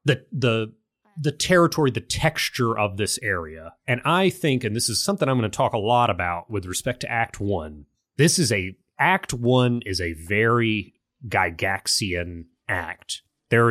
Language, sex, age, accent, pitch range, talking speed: English, male, 30-49, American, 100-130 Hz, 170 wpm